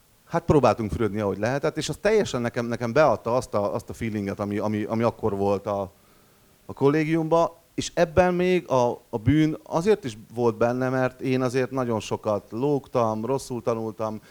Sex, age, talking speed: male, 30-49, 175 wpm